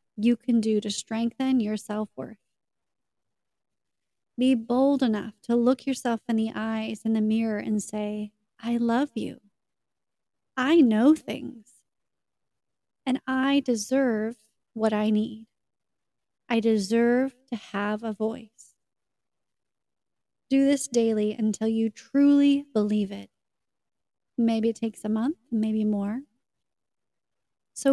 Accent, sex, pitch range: American, female, 215-260 Hz